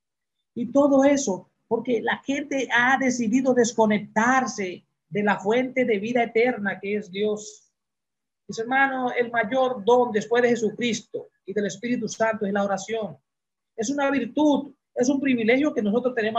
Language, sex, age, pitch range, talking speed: Spanish, male, 40-59, 170-235 Hz, 155 wpm